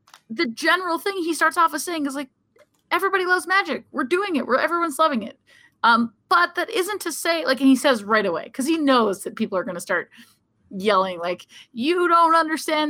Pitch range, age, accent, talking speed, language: 215-315 Hz, 20-39, American, 215 wpm, English